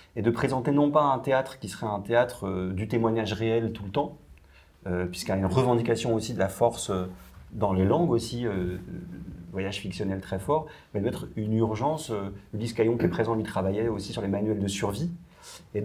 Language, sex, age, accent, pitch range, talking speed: French, male, 40-59, French, 100-135 Hz, 220 wpm